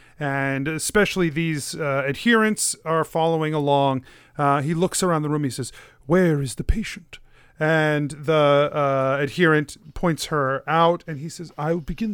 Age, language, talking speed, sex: 40-59, English, 165 wpm, male